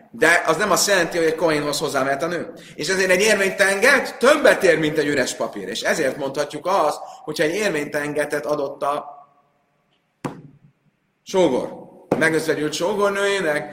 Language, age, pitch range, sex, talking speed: Hungarian, 30-49, 125-155 Hz, male, 145 wpm